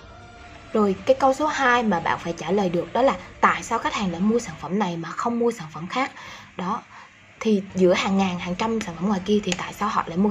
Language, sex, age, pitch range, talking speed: Vietnamese, female, 20-39, 180-240 Hz, 260 wpm